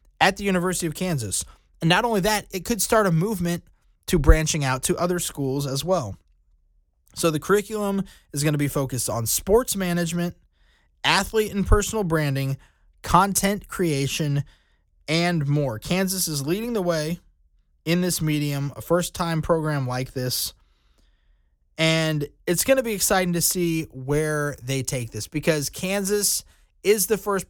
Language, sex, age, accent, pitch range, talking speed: English, male, 20-39, American, 135-190 Hz, 155 wpm